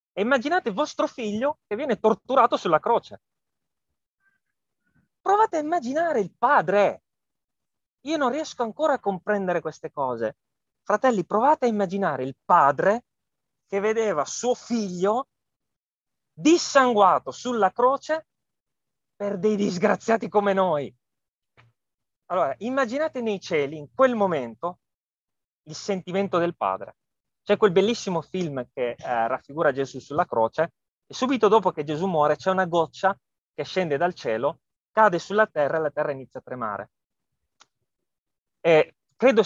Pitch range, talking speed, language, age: 150-220 Hz, 125 wpm, Italian, 30-49